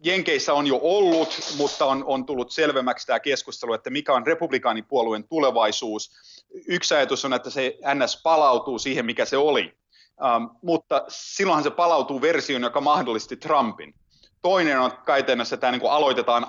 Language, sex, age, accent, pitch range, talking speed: Finnish, male, 30-49, native, 120-185 Hz, 155 wpm